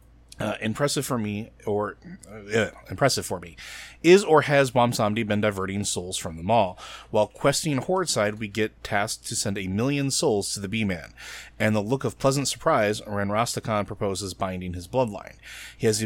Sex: male